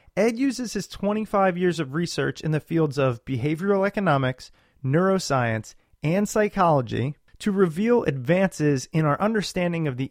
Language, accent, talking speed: English, American, 140 wpm